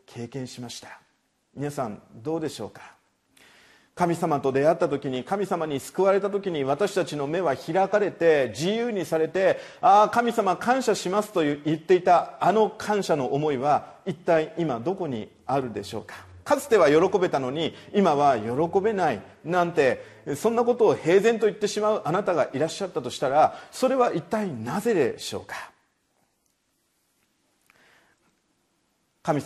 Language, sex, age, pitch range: Japanese, male, 40-59, 135-210 Hz